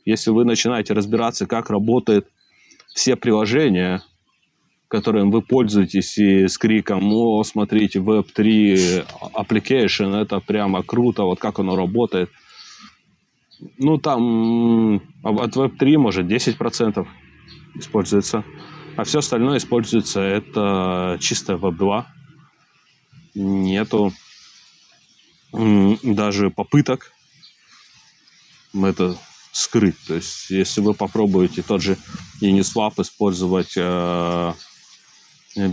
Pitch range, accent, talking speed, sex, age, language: 95-115 Hz, native, 90 wpm, male, 20-39, Russian